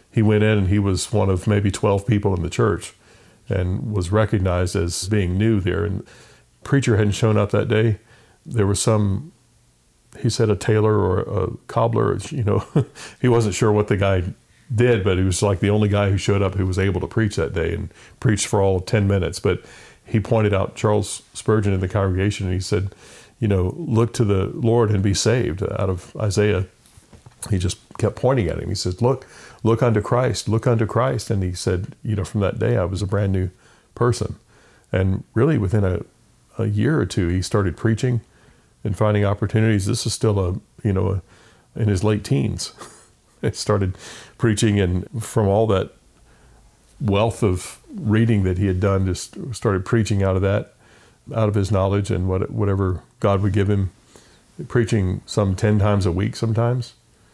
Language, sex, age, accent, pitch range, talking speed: English, male, 40-59, American, 95-115 Hz, 195 wpm